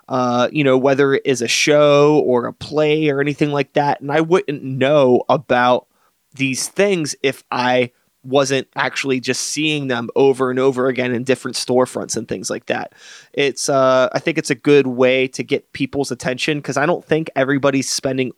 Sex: male